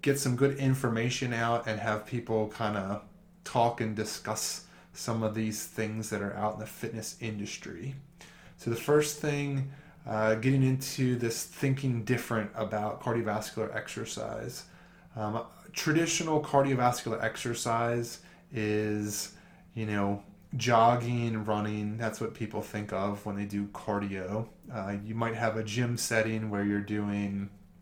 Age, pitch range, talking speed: 20-39, 105-130 Hz, 140 wpm